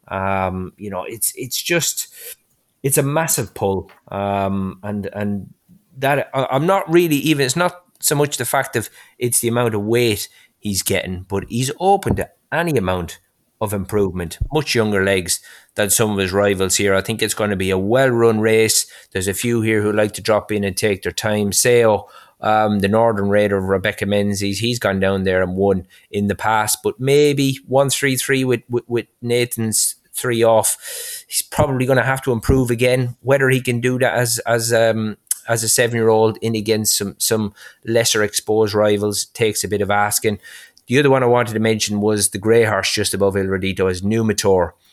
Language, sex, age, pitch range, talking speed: English, male, 30-49, 100-125 Hz, 195 wpm